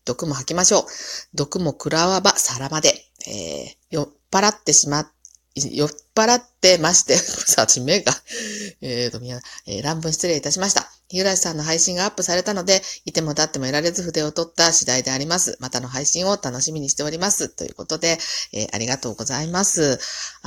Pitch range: 120-170 Hz